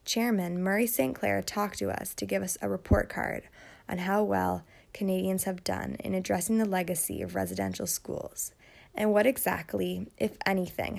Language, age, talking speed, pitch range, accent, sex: English, 20-39, 170 wpm, 180-215 Hz, American, female